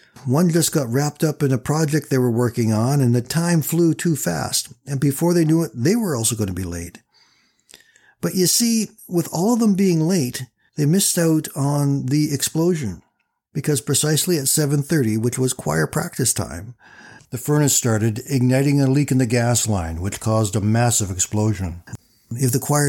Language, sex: English, male